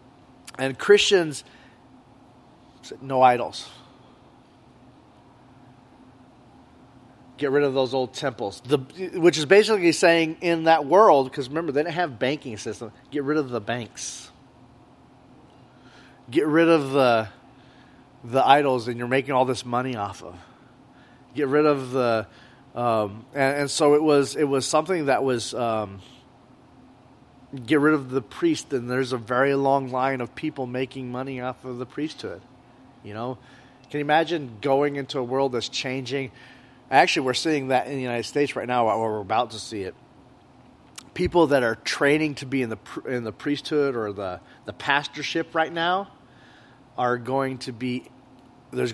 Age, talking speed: 30-49, 160 wpm